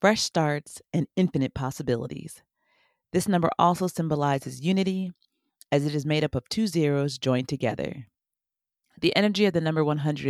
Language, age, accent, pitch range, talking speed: English, 40-59, American, 130-170 Hz, 150 wpm